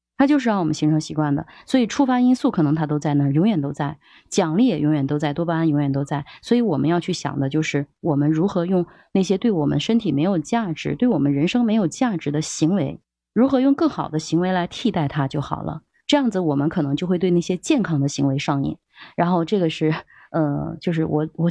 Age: 20-39